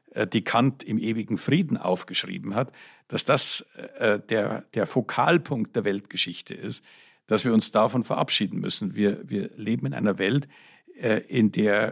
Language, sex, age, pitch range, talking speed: German, male, 50-69, 105-130 Hz, 155 wpm